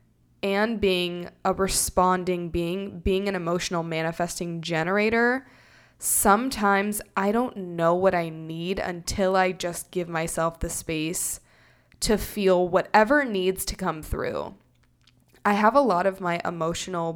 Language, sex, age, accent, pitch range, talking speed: English, female, 20-39, American, 170-210 Hz, 135 wpm